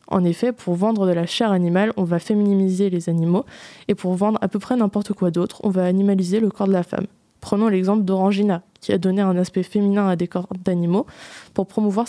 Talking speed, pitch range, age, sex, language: 225 wpm, 185-215 Hz, 20-39, female, French